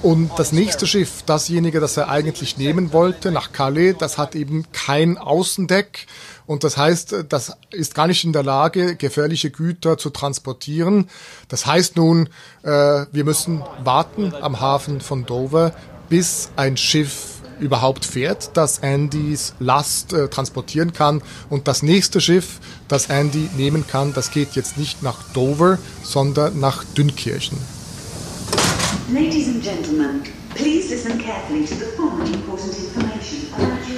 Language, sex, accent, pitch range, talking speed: German, male, German, 140-175 Hz, 135 wpm